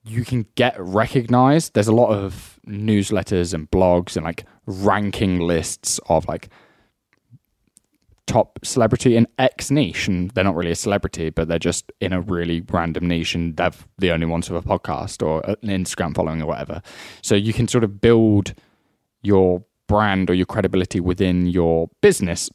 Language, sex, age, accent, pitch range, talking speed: English, male, 10-29, British, 90-110 Hz, 170 wpm